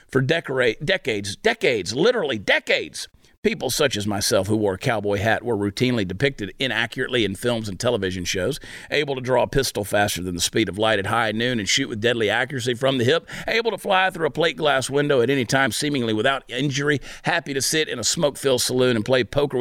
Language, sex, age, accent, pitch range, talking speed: English, male, 50-69, American, 110-150 Hz, 210 wpm